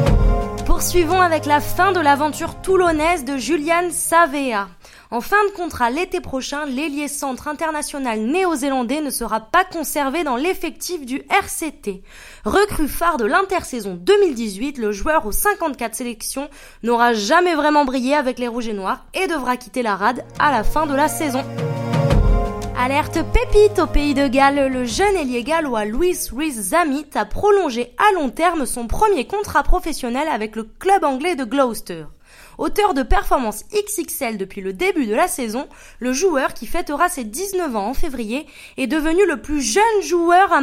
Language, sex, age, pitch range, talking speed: French, female, 20-39, 245-345 Hz, 165 wpm